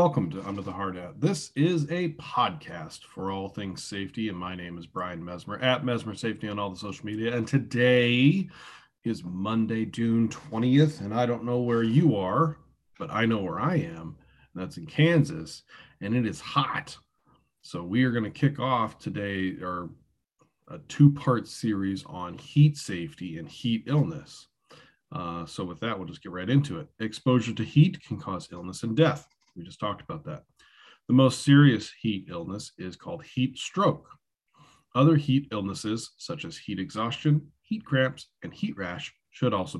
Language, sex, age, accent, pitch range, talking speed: English, male, 30-49, American, 105-145 Hz, 175 wpm